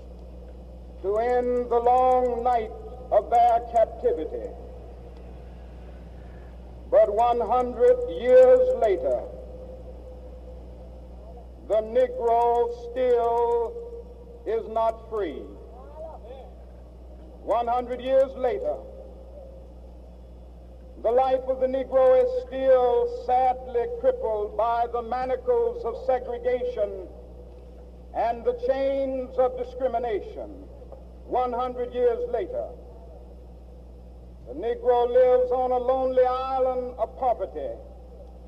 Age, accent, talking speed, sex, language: 60-79, American, 85 wpm, male, English